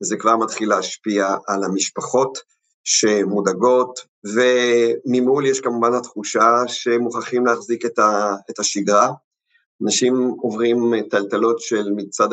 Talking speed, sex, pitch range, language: 105 wpm, male, 105-125 Hz, Hebrew